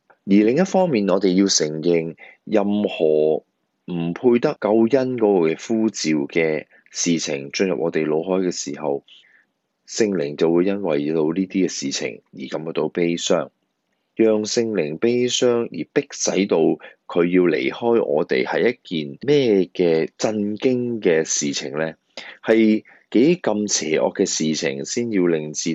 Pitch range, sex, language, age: 80-115 Hz, male, Chinese, 30-49